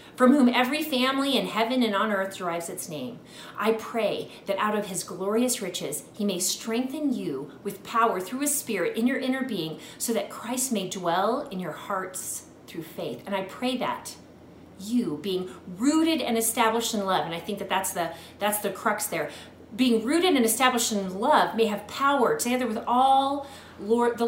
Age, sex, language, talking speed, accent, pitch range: 30-49, female, English, 190 wpm, American, 185-235 Hz